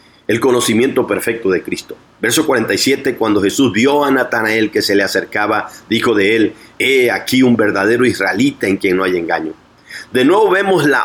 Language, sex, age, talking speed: Spanish, male, 40-59, 185 wpm